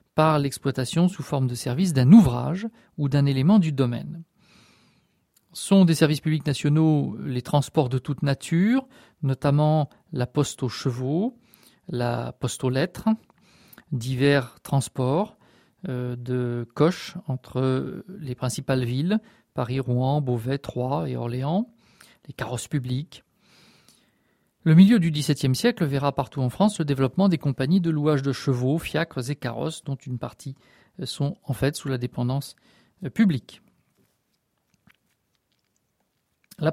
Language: French